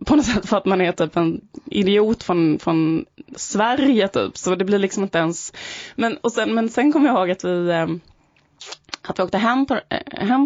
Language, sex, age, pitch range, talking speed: Swedish, female, 20-39, 185-240 Hz, 195 wpm